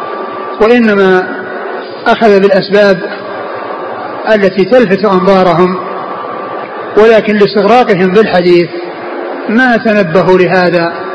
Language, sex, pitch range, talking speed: Arabic, male, 185-205 Hz, 65 wpm